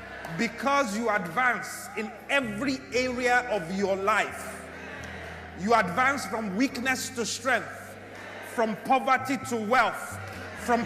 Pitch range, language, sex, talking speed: 210-270 Hz, English, male, 110 wpm